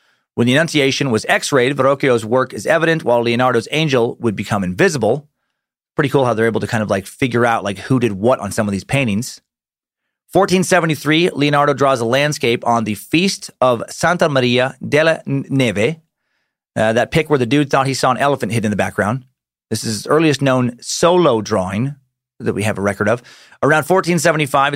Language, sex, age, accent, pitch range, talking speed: English, male, 30-49, American, 120-165 Hz, 190 wpm